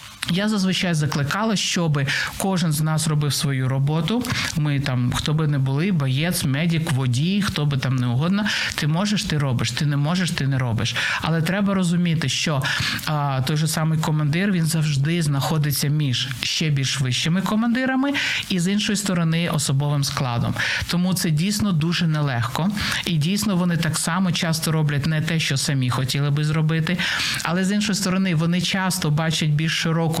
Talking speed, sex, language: 170 wpm, male, Ukrainian